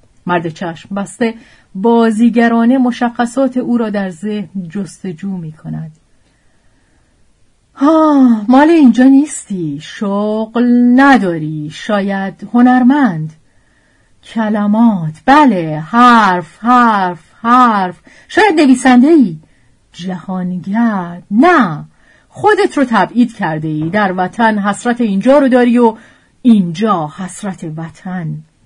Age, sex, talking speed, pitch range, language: 40-59, female, 95 wpm, 165-240 Hz, Persian